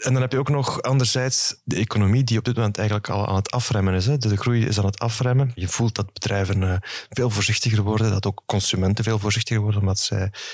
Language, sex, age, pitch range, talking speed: Dutch, male, 30-49, 95-115 Hz, 230 wpm